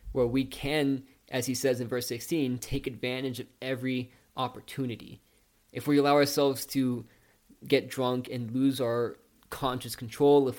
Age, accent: 20-39, American